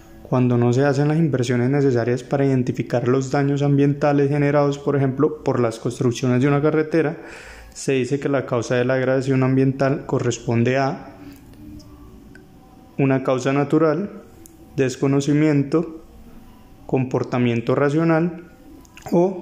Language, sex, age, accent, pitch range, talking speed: Spanish, male, 20-39, Colombian, 125-150 Hz, 120 wpm